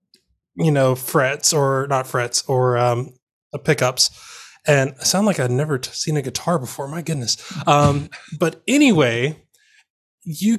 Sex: male